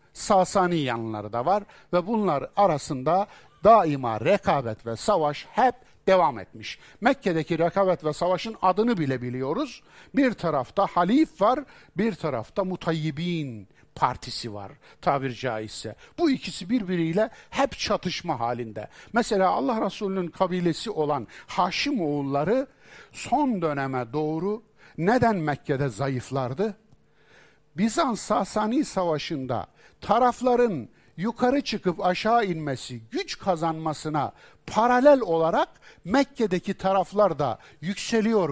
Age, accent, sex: 60-79, native, male